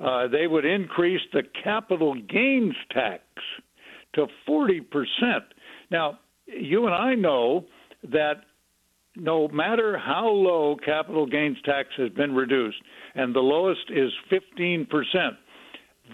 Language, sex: English, male